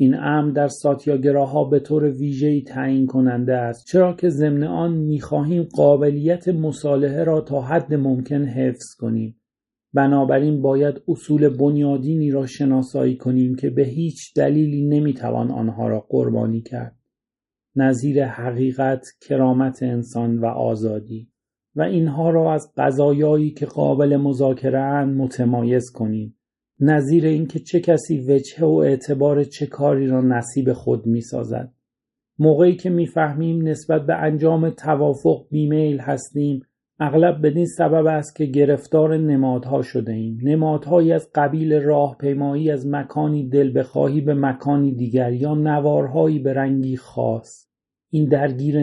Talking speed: 130 wpm